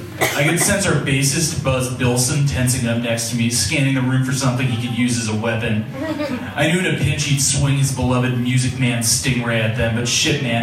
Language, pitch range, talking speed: English, 120-150 Hz, 225 wpm